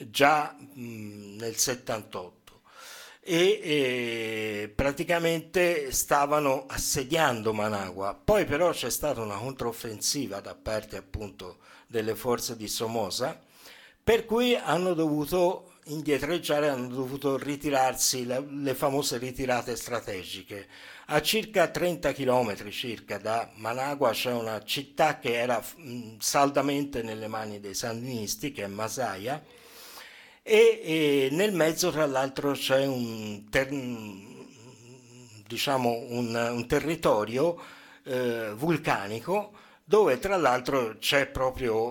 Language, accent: Italian, native